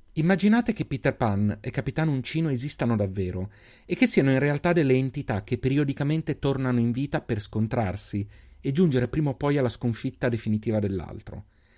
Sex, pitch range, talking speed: male, 105-155 Hz, 165 wpm